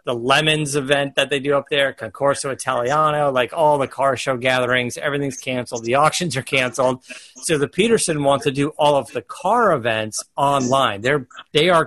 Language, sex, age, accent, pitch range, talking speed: English, male, 40-59, American, 125-165 Hz, 185 wpm